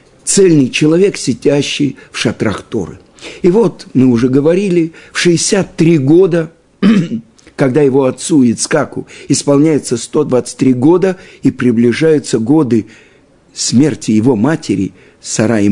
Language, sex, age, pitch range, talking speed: Russian, male, 50-69, 115-155 Hz, 110 wpm